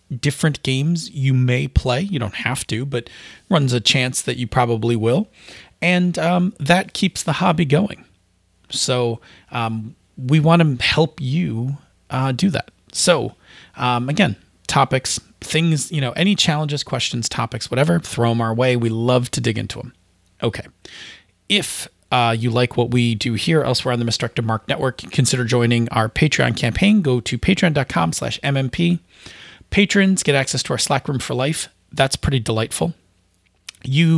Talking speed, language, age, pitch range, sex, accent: 165 wpm, English, 30-49, 115-145 Hz, male, American